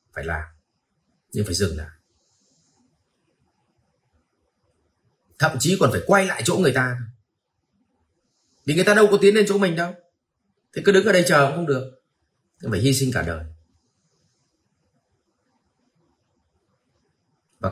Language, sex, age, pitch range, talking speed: Vietnamese, male, 30-49, 110-145 Hz, 140 wpm